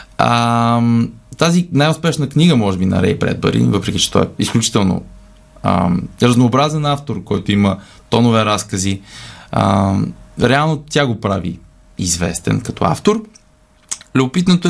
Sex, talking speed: male, 125 wpm